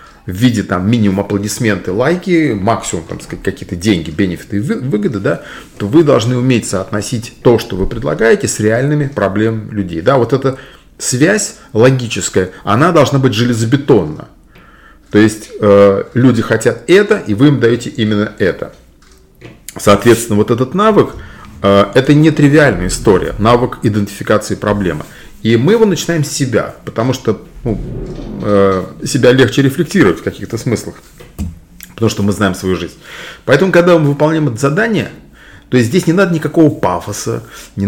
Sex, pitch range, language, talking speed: male, 105-145 Hz, Russian, 155 wpm